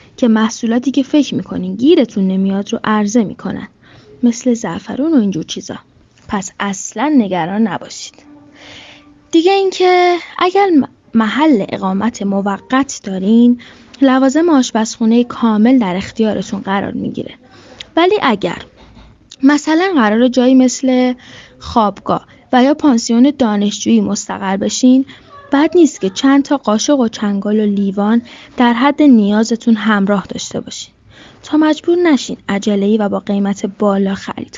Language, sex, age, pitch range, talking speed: Persian, female, 10-29, 210-290 Hz, 125 wpm